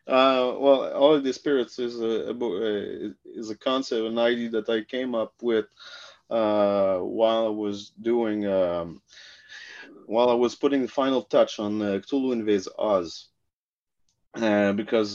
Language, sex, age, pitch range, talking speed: English, male, 30-49, 95-115 Hz, 150 wpm